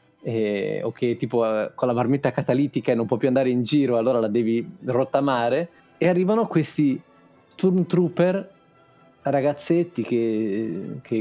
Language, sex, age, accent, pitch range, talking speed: Italian, male, 20-39, native, 120-155 Hz, 140 wpm